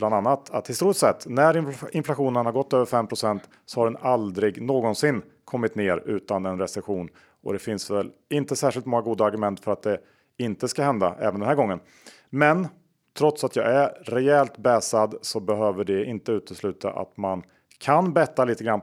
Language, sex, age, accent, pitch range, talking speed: Swedish, male, 40-59, Norwegian, 105-130 Hz, 185 wpm